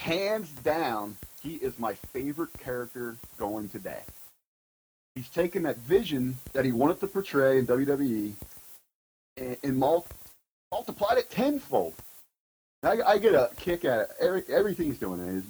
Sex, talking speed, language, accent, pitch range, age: male, 150 wpm, English, American, 95-140 Hz, 30-49